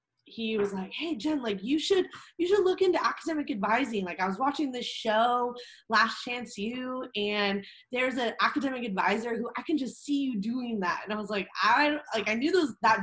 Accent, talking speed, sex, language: American, 210 wpm, female, English